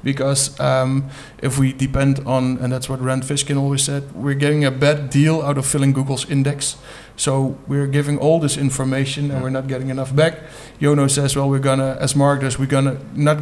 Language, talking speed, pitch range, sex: English, 200 wpm, 135-145 Hz, male